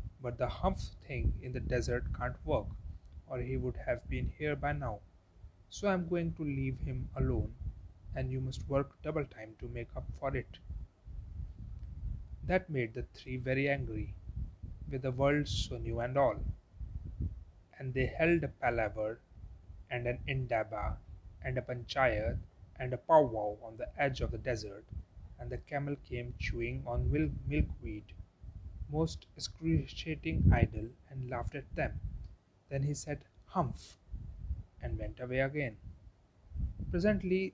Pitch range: 95-135 Hz